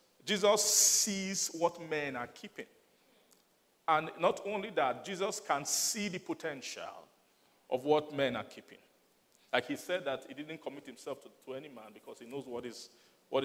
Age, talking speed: 40-59, 170 wpm